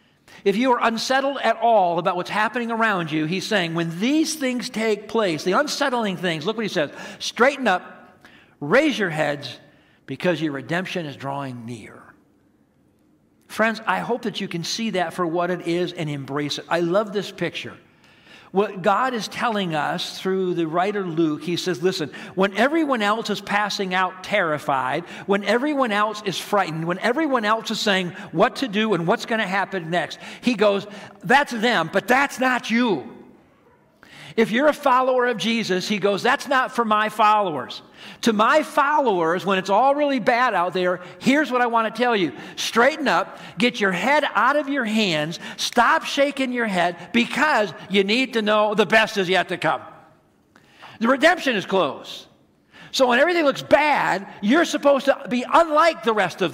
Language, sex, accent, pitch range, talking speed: English, male, American, 180-250 Hz, 185 wpm